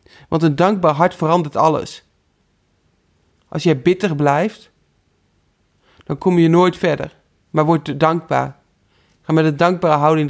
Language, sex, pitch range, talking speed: Dutch, male, 105-170 Hz, 135 wpm